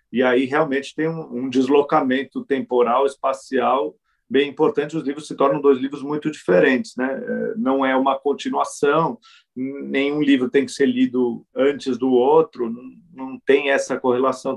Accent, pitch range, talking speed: Brazilian, 125-155 Hz, 150 wpm